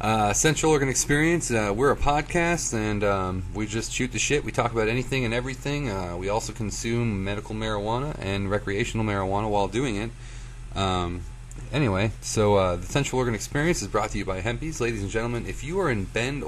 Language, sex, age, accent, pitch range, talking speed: English, male, 30-49, American, 105-125 Hz, 200 wpm